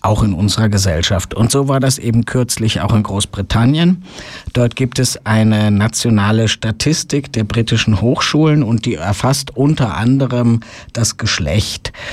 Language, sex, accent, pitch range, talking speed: German, male, German, 110-125 Hz, 145 wpm